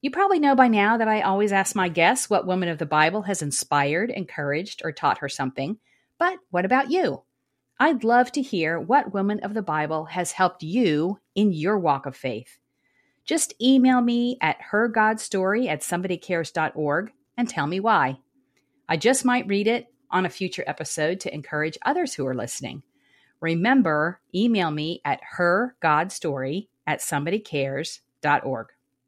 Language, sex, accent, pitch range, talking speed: English, female, American, 150-220 Hz, 150 wpm